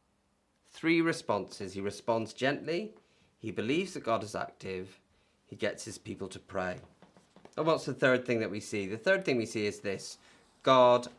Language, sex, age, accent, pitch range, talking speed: English, male, 30-49, British, 105-155 Hz, 175 wpm